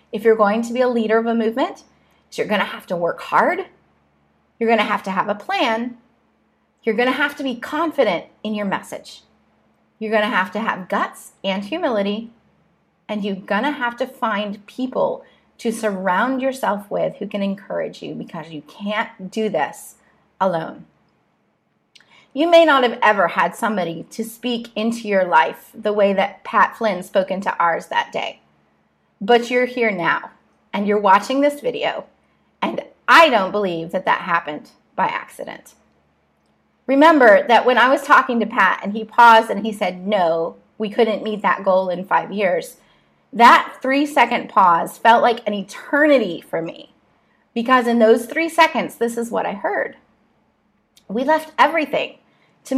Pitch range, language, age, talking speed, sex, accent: 205-265 Hz, English, 30-49, 175 wpm, female, American